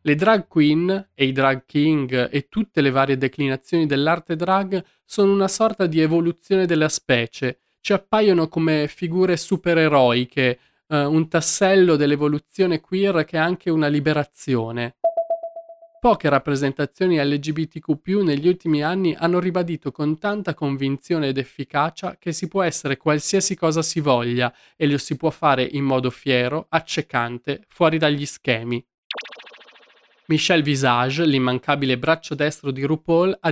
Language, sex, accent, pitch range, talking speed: Italian, male, native, 135-175 Hz, 140 wpm